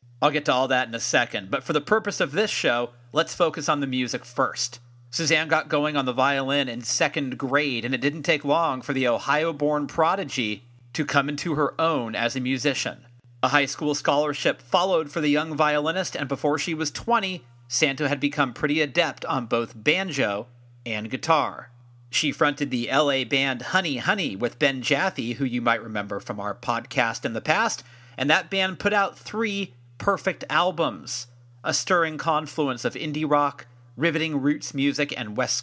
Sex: male